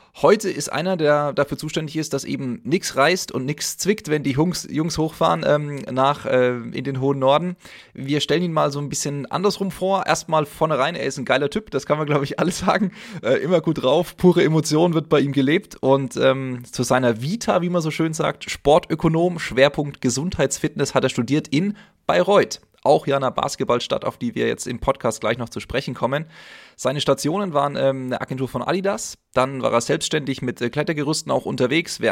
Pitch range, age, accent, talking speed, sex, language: 130-160 Hz, 30-49, German, 205 wpm, male, German